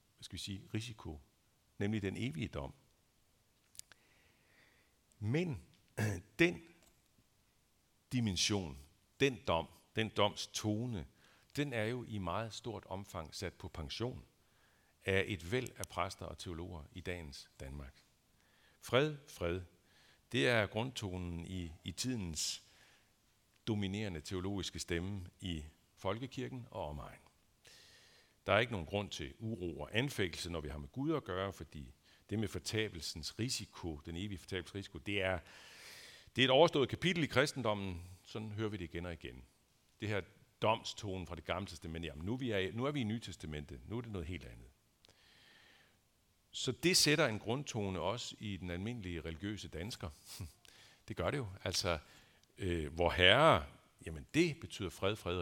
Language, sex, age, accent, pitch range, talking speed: Danish, male, 60-79, native, 85-110 Hz, 150 wpm